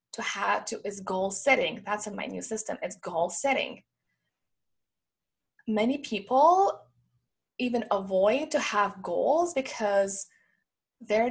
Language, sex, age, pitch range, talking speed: English, female, 20-39, 220-295 Hz, 120 wpm